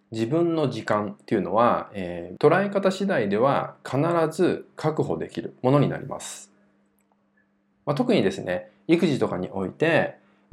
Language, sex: Japanese, male